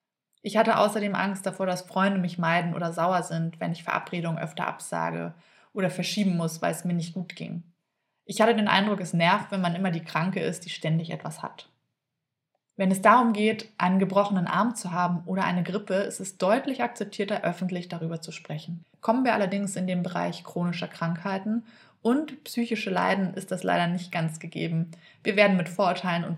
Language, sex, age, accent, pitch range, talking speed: German, female, 20-39, German, 170-200 Hz, 190 wpm